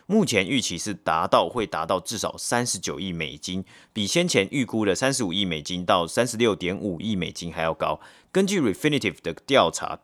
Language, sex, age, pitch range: Chinese, male, 30-49, 90-125 Hz